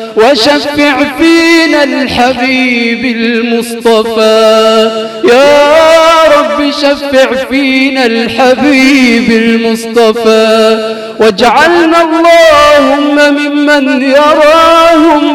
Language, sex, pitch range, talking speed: English, male, 230-270 Hz, 55 wpm